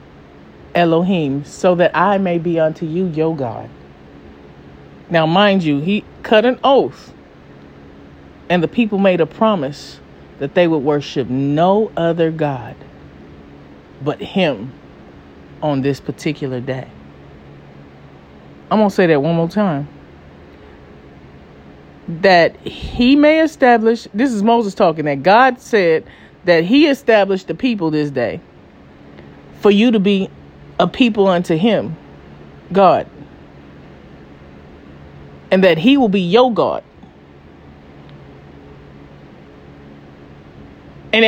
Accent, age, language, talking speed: American, 40-59, English, 115 wpm